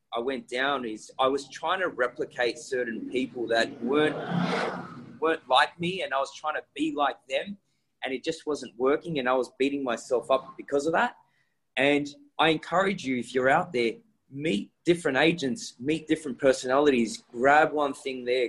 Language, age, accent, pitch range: English, 20-39, Australian, 130-165 Hz